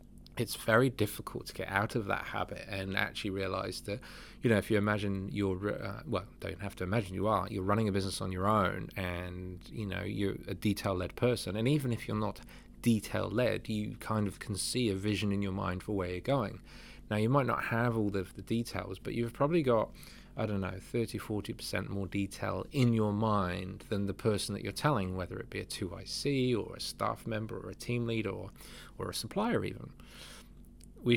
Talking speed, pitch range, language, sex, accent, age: 205 wpm, 95-120 Hz, English, male, British, 20-39